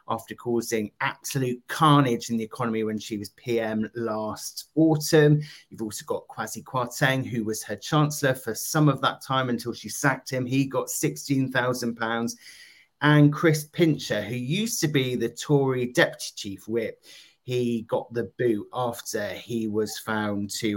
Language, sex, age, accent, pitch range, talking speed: English, male, 30-49, British, 115-145 Hz, 165 wpm